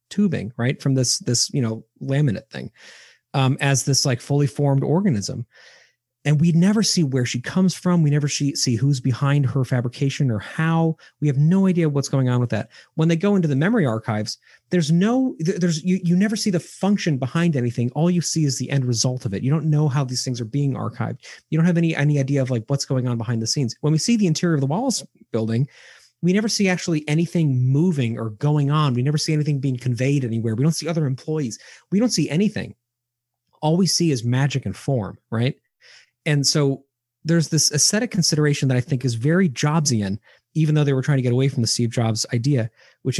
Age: 30-49